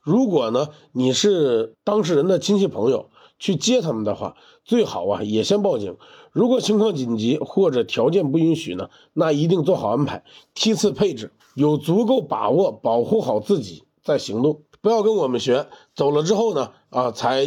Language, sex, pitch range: Chinese, male, 140-220 Hz